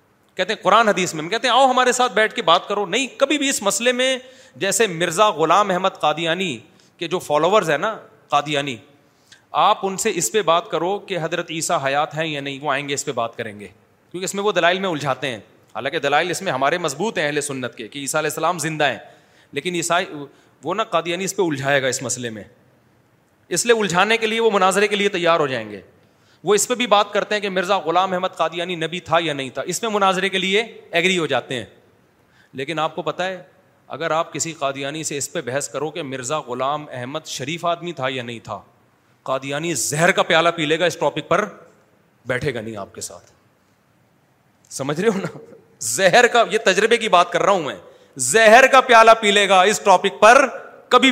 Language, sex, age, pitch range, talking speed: Urdu, male, 30-49, 150-210 Hz, 220 wpm